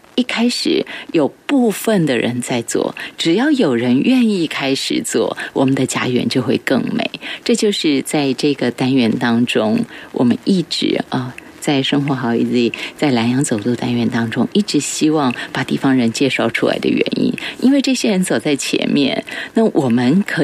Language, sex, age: Chinese, female, 30-49